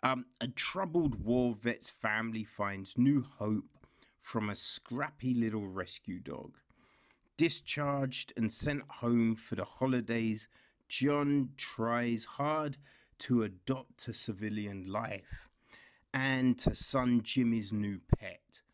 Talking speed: 115 wpm